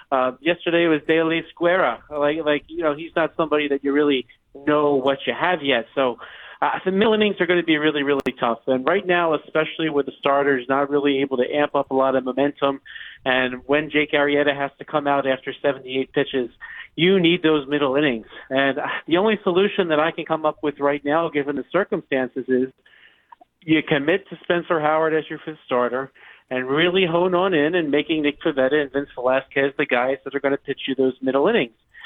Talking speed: 210 wpm